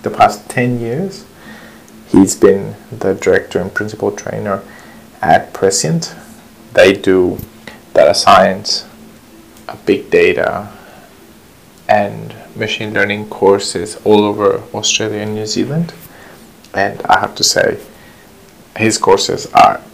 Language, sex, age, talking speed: English, male, 30-49, 110 wpm